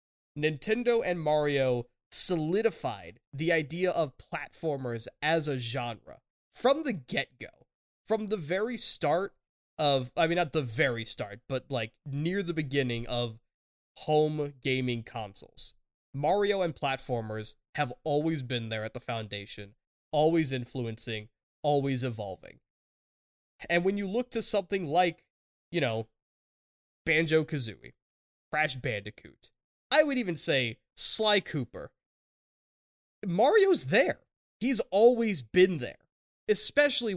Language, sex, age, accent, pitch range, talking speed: English, male, 20-39, American, 130-190 Hz, 120 wpm